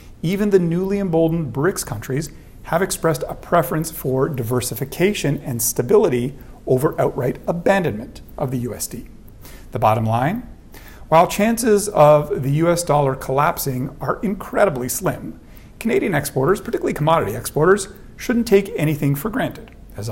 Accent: American